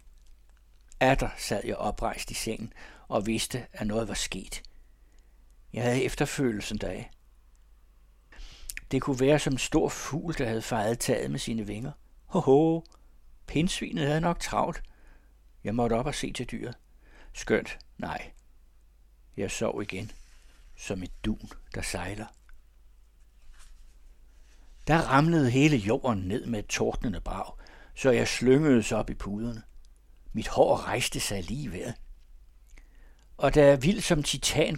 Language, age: Danish, 60-79